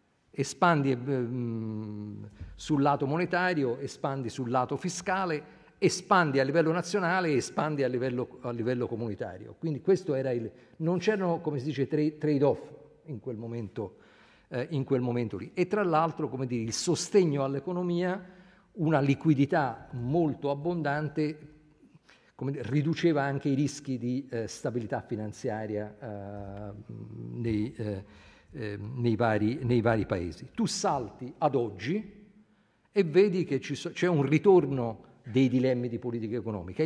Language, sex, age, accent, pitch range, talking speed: Italian, male, 50-69, native, 120-155 Hz, 135 wpm